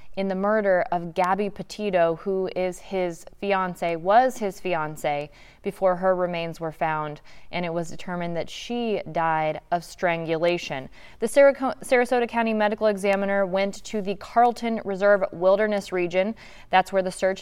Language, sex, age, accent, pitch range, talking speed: English, female, 20-39, American, 180-215 Hz, 150 wpm